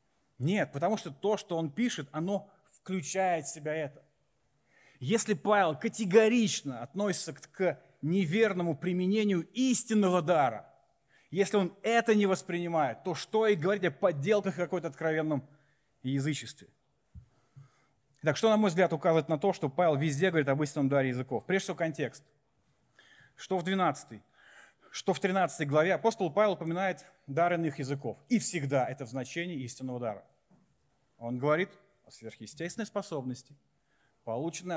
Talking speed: 140 wpm